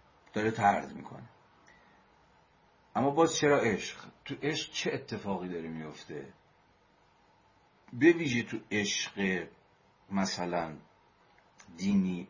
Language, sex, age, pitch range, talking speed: Persian, male, 50-69, 90-115 Hz, 95 wpm